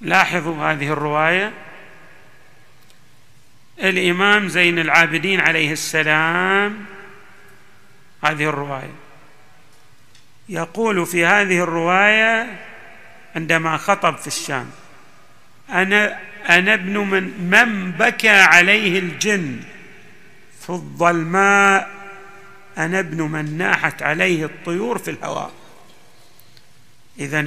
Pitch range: 150-205 Hz